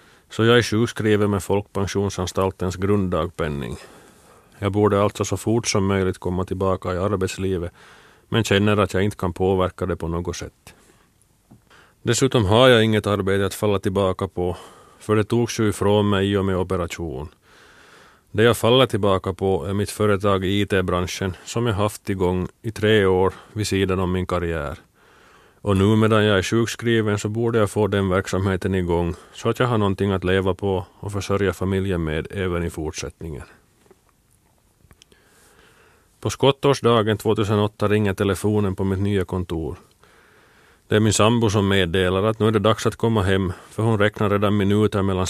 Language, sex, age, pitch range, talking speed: Swedish, male, 30-49, 95-105 Hz, 165 wpm